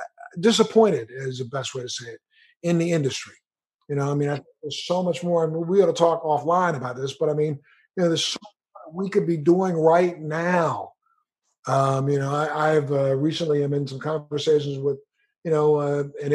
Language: English